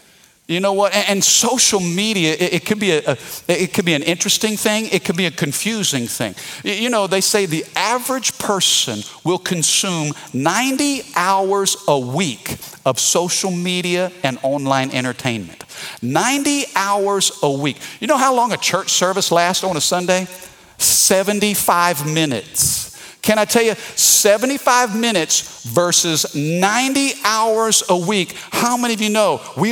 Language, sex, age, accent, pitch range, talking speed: English, male, 50-69, American, 150-205 Hz, 150 wpm